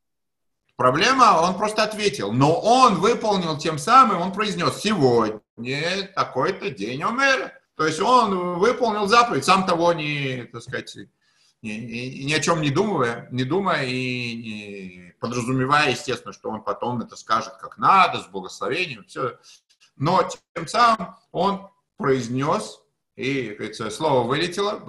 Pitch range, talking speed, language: 125-200 Hz, 140 wpm, English